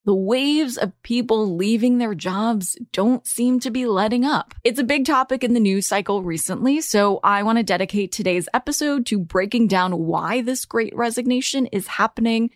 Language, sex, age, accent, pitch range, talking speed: English, female, 20-39, American, 185-240 Hz, 180 wpm